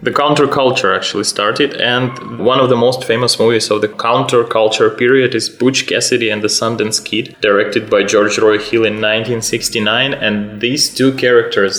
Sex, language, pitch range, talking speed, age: male, English, 105-120 Hz, 170 wpm, 20-39